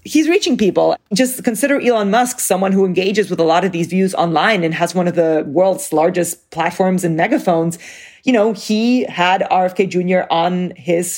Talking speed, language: 190 wpm, English